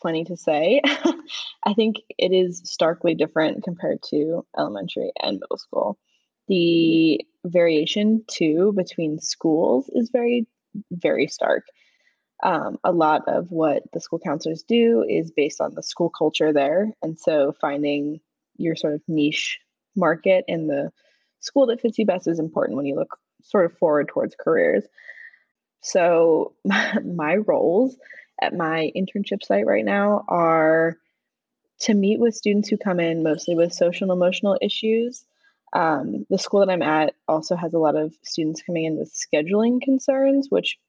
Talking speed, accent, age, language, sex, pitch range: 155 wpm, American, 10-29, English, female, 165-235 Hz